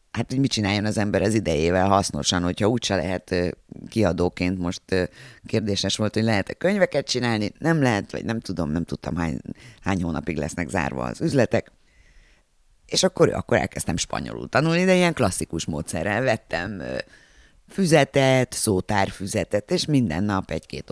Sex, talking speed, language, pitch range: female, 145 wpm, Hungarian, 90-125 Hz